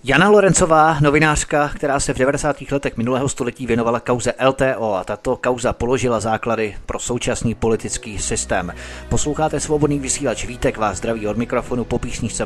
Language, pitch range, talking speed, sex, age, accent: Czech, 110-130 Hz, 155 wpm, male, 30-49, native